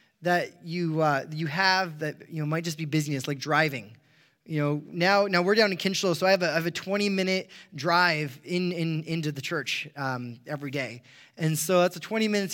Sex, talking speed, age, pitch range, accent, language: male, 200 wpm, 20-39, 150-190 Hz, American, English